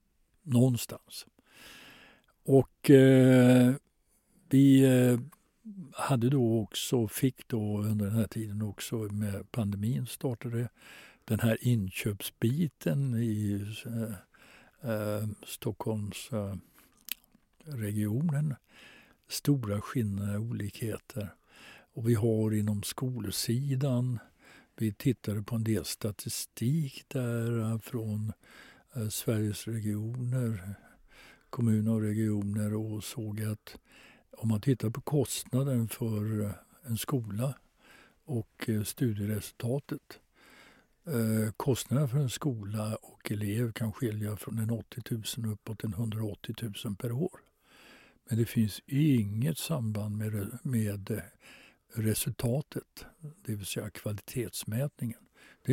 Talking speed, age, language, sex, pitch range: 100 wpm, 60-79, Swedish, male, 105-130 Hz